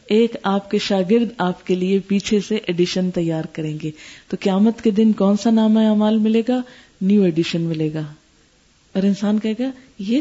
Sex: female